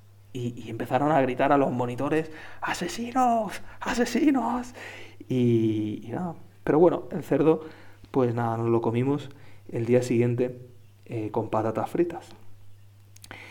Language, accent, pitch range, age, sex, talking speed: Spanish, Spanish, 105-155 Hz, 30-49, male, 125 wpm